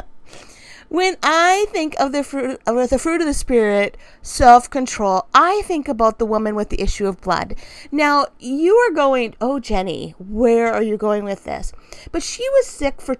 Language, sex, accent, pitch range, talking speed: English, female, American, 210-290 Hz, 180 wpm